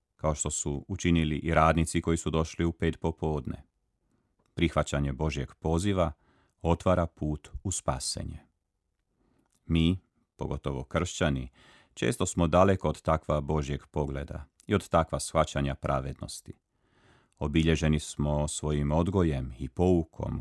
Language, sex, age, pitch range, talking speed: Croatian, male, 40-59, 75-85 Hz, 120 wpm